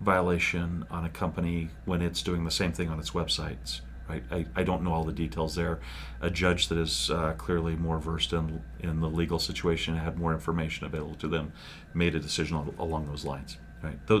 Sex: male